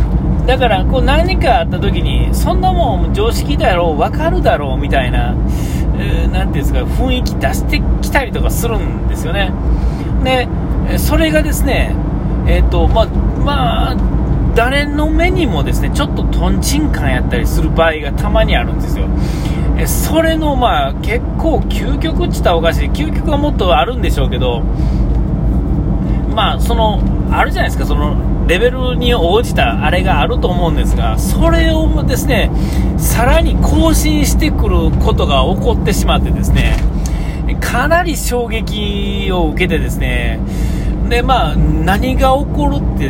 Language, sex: Japanese, male